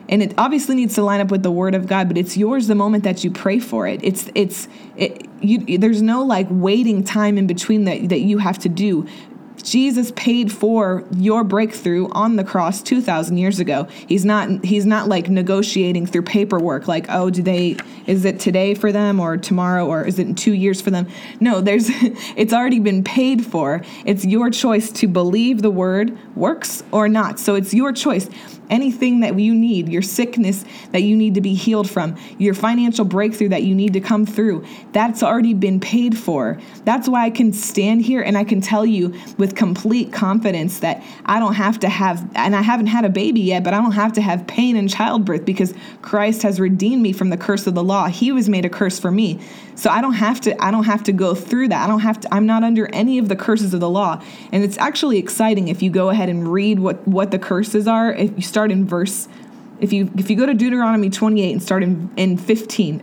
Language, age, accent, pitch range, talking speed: English, 20-39, American, 190-225 Hz, 225 wpm